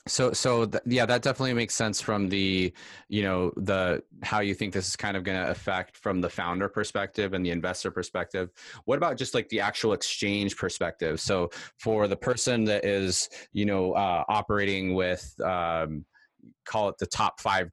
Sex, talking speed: male, 190 wpm